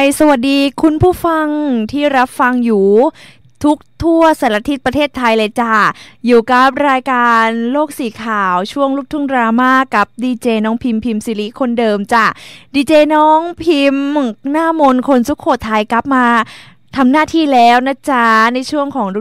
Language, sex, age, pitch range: Thai, female, 20-39, 225-280 Hz